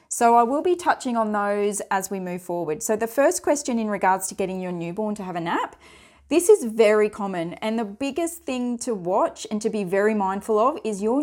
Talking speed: 230 wpm